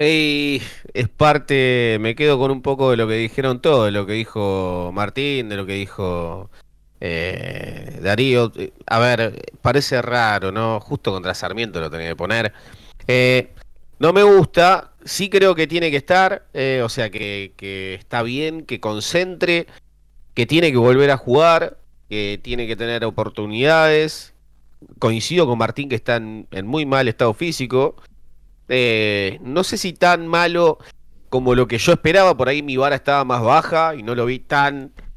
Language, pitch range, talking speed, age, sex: Spanish, 100-140 Hz, 170 wpm, 30-49, male